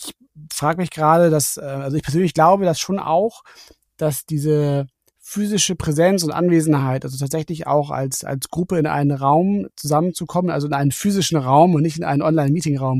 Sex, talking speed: male, 170 wpm